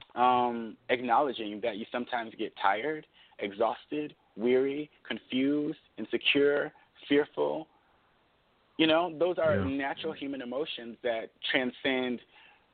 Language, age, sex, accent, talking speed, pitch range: English, 30-49, male, American, 100 wpm, 115-155 Hz